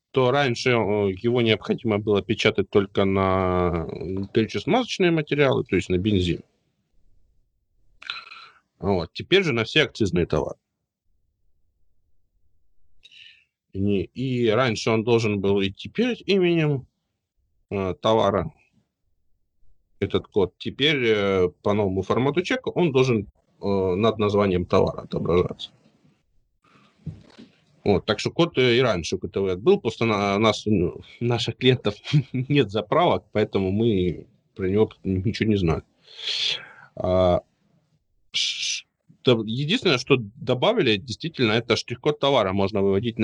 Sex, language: male, Ukrainian